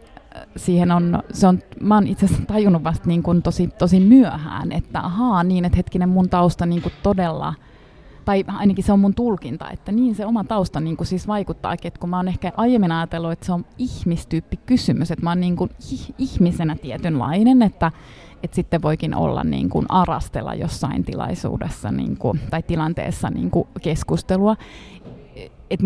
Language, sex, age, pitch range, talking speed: Finnish, female, 30-49, 170-210 Hz, 175 wpm